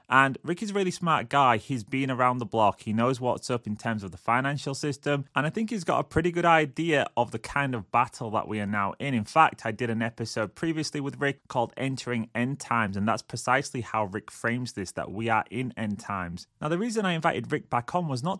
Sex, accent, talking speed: male, British, 250 wpm